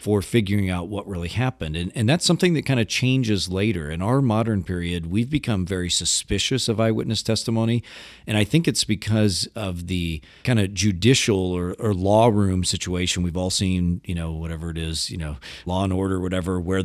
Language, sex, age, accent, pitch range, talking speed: English, male, 40-59, American, 85-110 Hz, 205 wpm